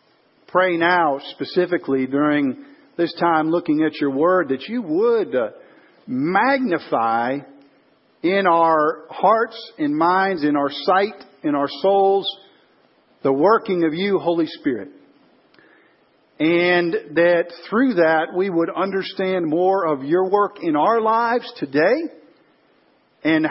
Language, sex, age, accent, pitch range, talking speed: English, male, 50-69, American, 165-220 Hz, 120 wpm